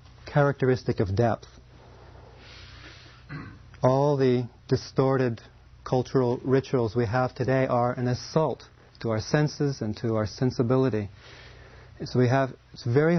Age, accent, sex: 40-59, American, male